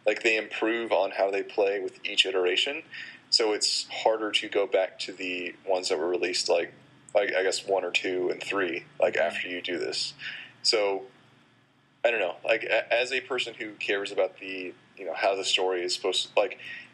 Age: 30-49